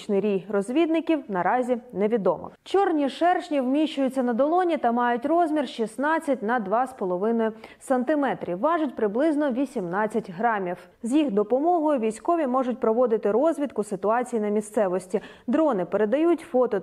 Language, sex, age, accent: Ukrainian, female, 20-39, native